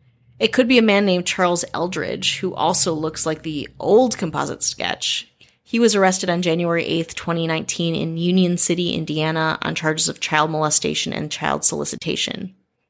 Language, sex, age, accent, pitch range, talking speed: English, female, 20-39, American, 165-205 Hz, 165 wpm